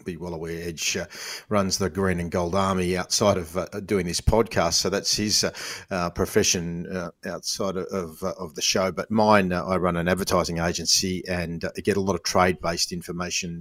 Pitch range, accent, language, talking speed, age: 80-90 Hz, Australian, English, 205 wpm, 40-59